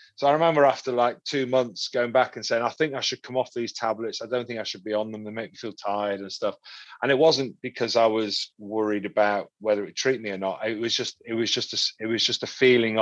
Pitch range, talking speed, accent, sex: 110-130 Hz, 275 wpm, British, male